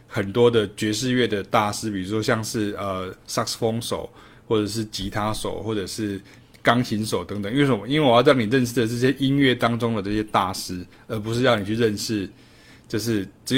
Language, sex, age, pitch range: Chinese, male, 20-39, 105-135 Hz